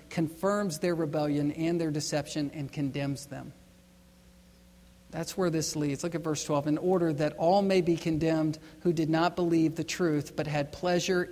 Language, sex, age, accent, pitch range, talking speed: English, male, 50-69, American, 150-190 Hz, 175 wpm